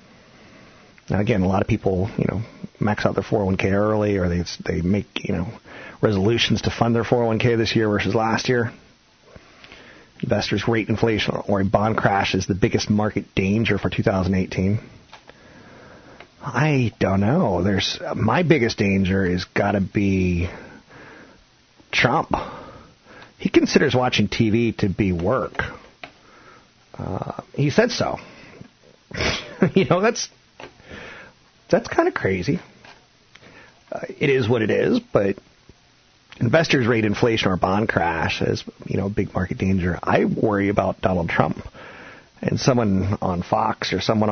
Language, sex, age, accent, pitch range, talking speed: English, male, 40-59, American, 95-120 Hz, 140 wpm